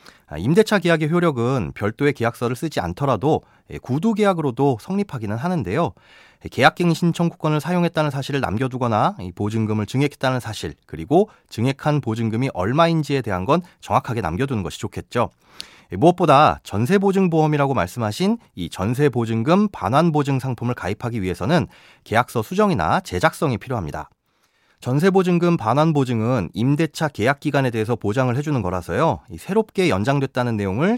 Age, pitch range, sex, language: 30-49, 110-160 Hz, male, Korean